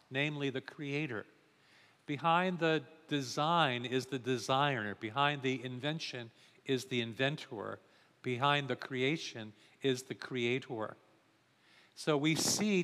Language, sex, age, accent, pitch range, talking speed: English, male, 50-69, American, 125-160 Hz, 110 wpm